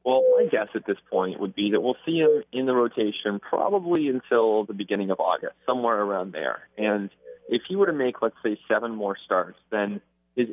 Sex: male